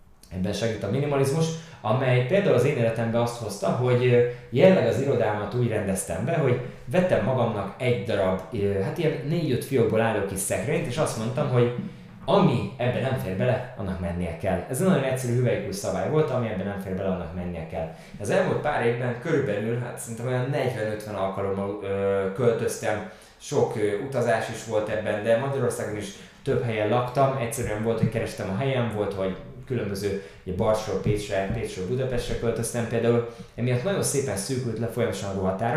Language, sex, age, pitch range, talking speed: Hungarian, male, 20-39, 100-130 Hz, 170 wpm